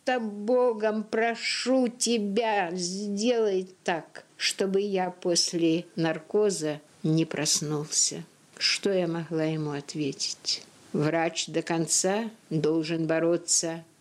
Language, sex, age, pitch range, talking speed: Russian, female, 60-79, 165-210 Hz, 90 wpm